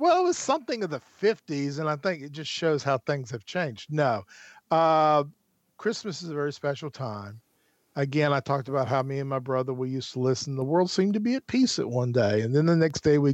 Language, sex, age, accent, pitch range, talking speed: English, male, 50-69, American, 125-155 Hz, 245 wpm